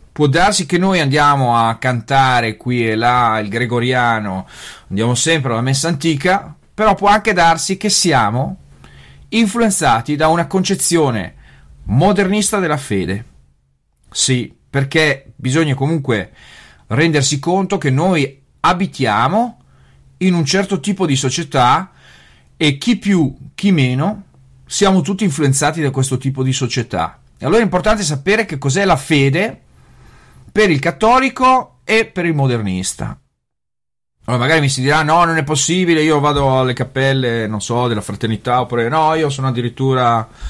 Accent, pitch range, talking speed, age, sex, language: native, 120-170 Hz, 140 wpm, 40-59, male, Italian